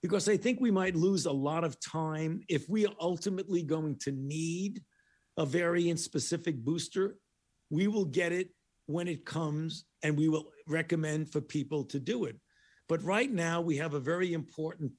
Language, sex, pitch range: English, male, 150-180 Hz